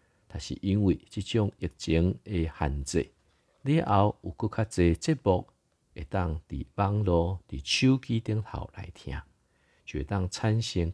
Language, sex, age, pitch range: Chinese, male, 50-69, 80-105 Hz